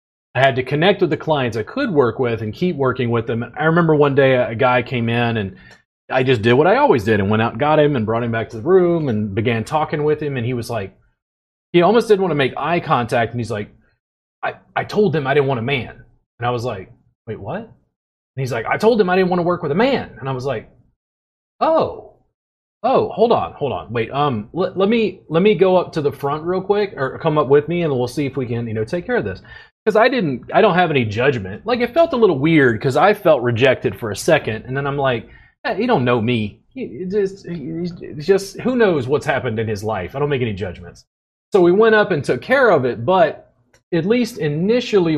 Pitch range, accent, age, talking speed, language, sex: 120-170 Hz, American, 30-49, 260 wpm, English, male